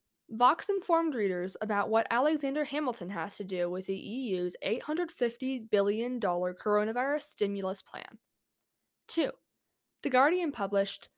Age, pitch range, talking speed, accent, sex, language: 10-29, 195-270 Hz, 120 wpm, American, female, English